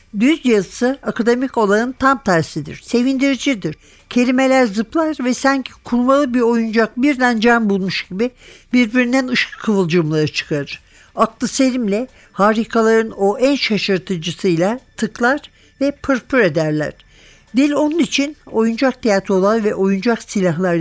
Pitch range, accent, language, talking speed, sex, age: 190-245 Hz, native, Turkish, 115 wpm, male, 60-79